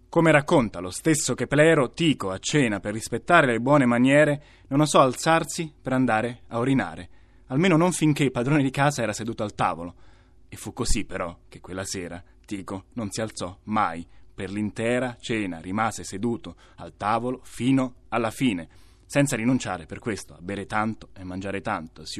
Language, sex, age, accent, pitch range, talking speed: Italian, male, 20-39, native, 95-130 Hz, 175 wpm